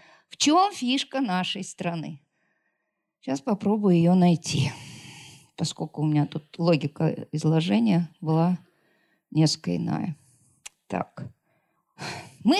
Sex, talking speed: female, 95 wpm